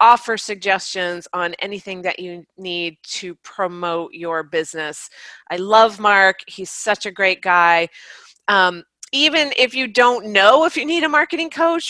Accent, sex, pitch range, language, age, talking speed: American, female, 180-245 Hz, English, 30-49, 155 wpm